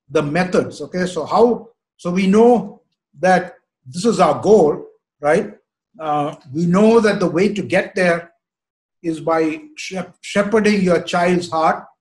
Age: 50-69